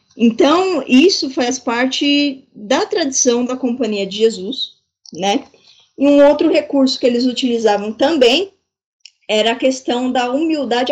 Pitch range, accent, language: 200-265 Hz, Brazilian, Portuguese